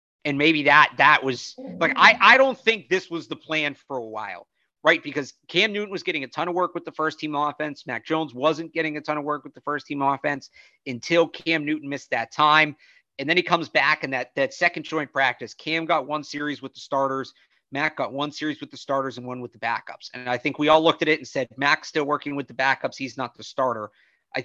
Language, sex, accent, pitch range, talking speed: English, male, American, 125-155 Hz, 250 wpm